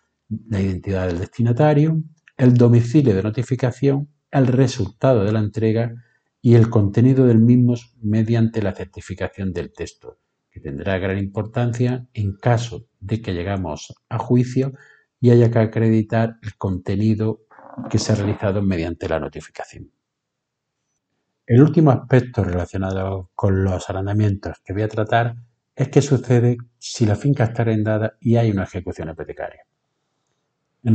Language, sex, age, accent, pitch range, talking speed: Spanish, male, 50-69, Spanish, 100-125 Hz, 140 wpm